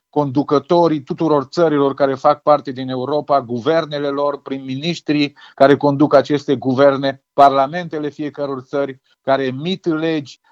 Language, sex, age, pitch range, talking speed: Romanian, male, 40-59, 140-165 Hz, 120 wpm